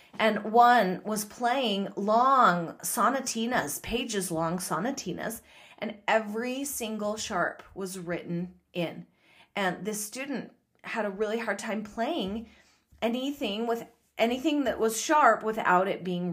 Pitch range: 190-260 Hz